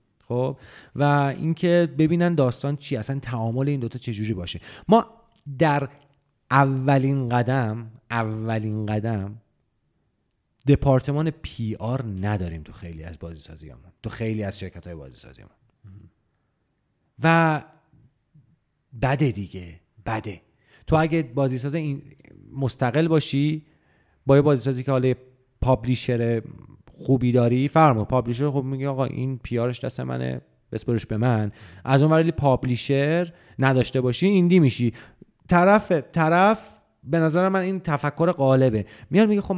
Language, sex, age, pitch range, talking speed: Persian, male, 40-59, 110-150 Hz, 130 wpm